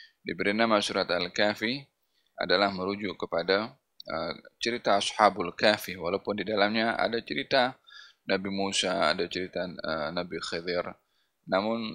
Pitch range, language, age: 95-115 Hz, Malay, 20-39